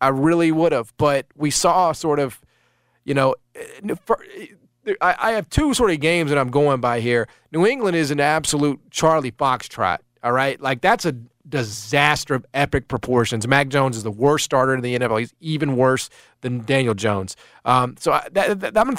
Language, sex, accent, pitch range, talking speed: English, male, American, 120-155 Hz, 175 wpm